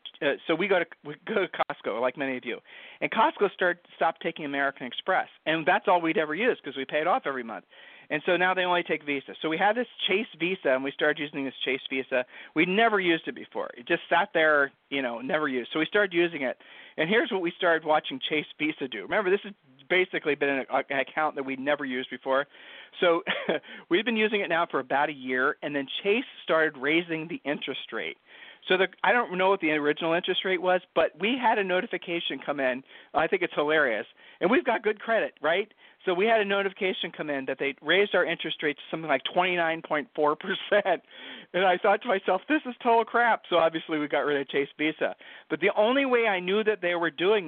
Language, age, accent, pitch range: English, 40-59, American, 140-185 Hz